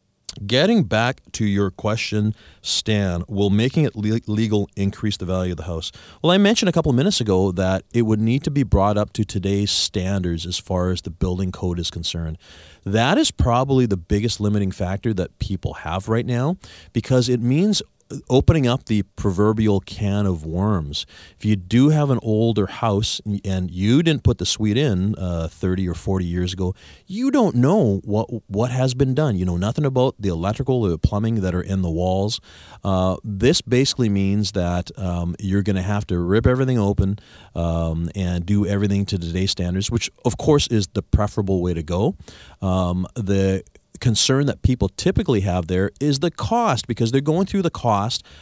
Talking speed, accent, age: 190 wpm, American, 40-59